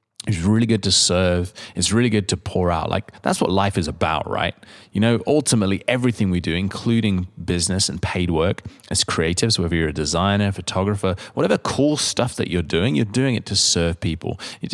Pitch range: 95-120 Hz